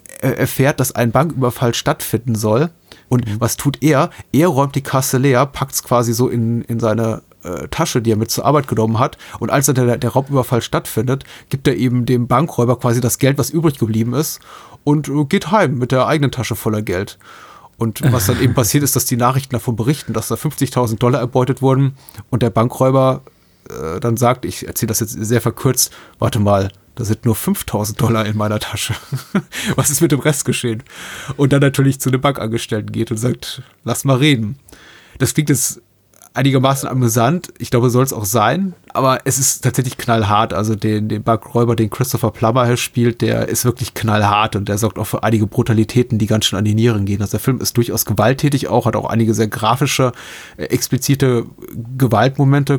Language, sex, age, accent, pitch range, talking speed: German, male, 30-49, German, 115-135 Hz, 200 wpm